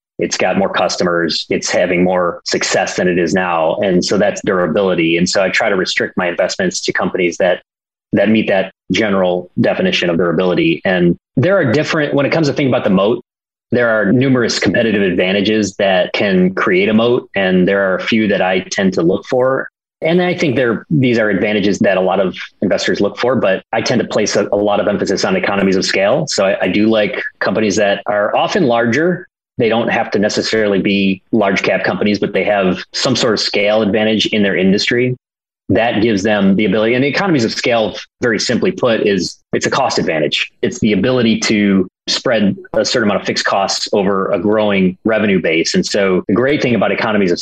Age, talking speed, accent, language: 30-49, 210 wpm, American, English